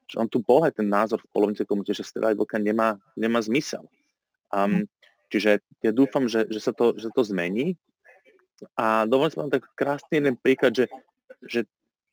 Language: Slovak